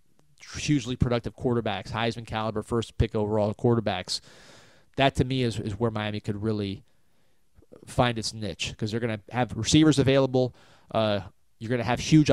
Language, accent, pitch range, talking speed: English, American, 105-125 Hz, 165 wpm